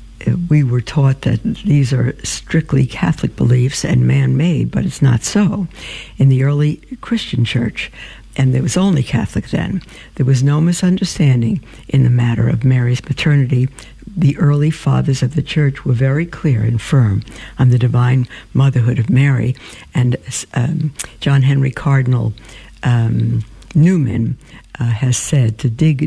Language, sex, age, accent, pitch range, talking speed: English, female, 60-79, American, 120-145 Hz, 150 wpm